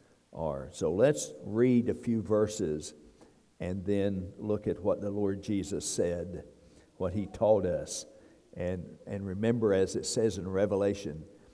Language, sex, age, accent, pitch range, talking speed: English, male, 60-79, American, 100-120 Hz, 145 wpm